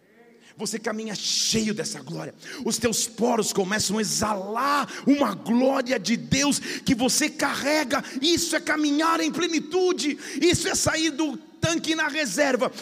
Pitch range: 195-250 Hz